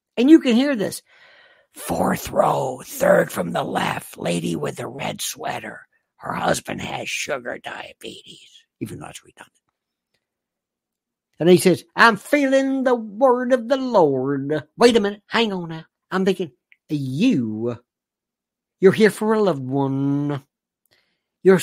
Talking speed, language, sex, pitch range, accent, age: 140 wpm, English, male, 155-240 Hz, American, 60-79